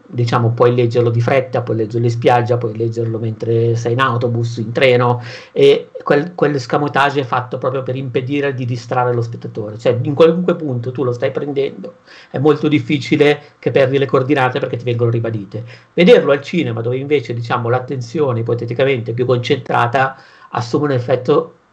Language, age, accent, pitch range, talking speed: Italian, 50-69, native, 120-145 Hz, 170 wpm